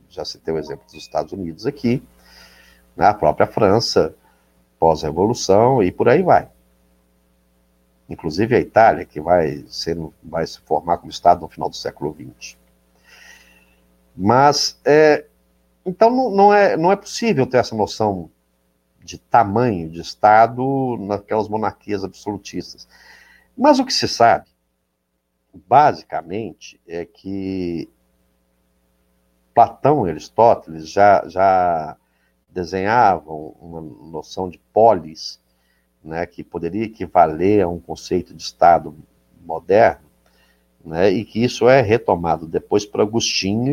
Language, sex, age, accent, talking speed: Portuguese, male, 60-79, Brazilian, 115 wpm